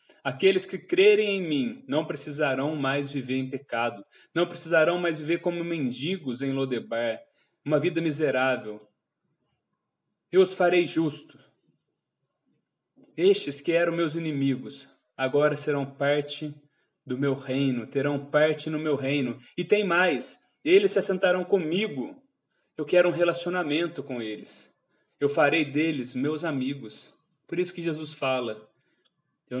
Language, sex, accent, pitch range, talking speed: Portuguese, male, Brazilian, 130-170 Hz, 135 wpm